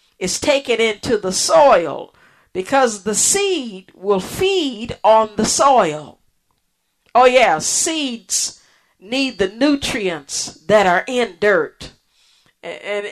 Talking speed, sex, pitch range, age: 110 wpm, female, 205-275 Hz, 50-69